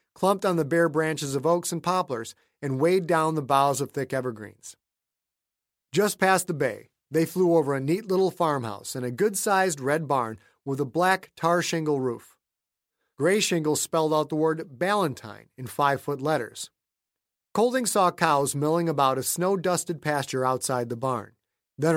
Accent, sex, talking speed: American, male, 165 wpm